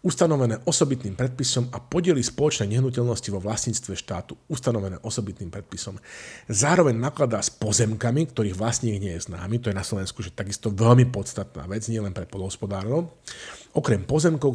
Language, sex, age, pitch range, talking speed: Slovak, male, 40-59, 105-130 Hz, 150 wpm